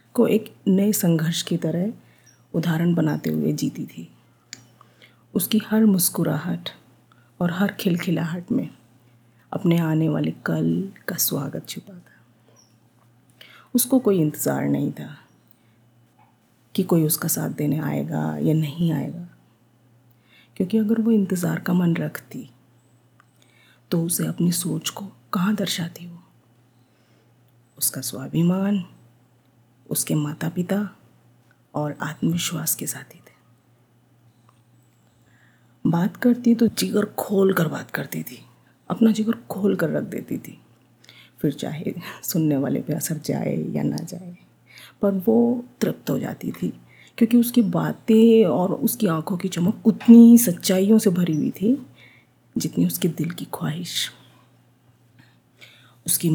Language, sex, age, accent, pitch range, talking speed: Hindi, female, 30-49, native, 120-190 Hz, 125 wpm